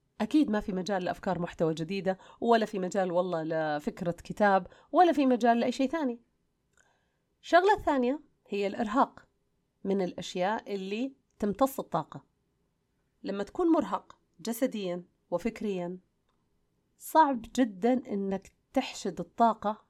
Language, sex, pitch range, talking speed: Arabic, female, 185-250 Hz, 115 wpm